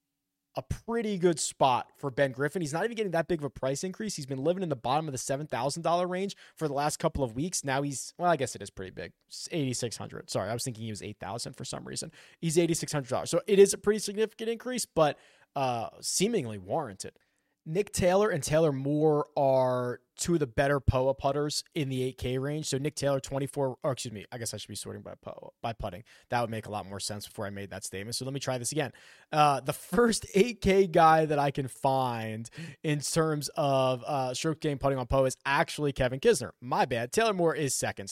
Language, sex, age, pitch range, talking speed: English, male, 20-39, 125-160 Hz, 230 wpm